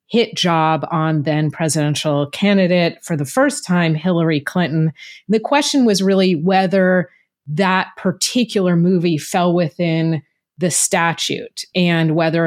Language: English